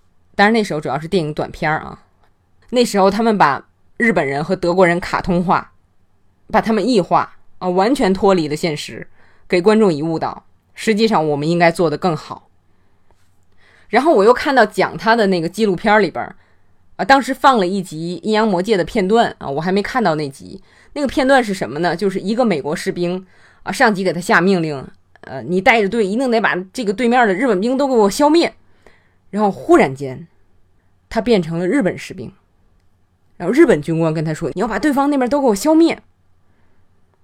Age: 20-39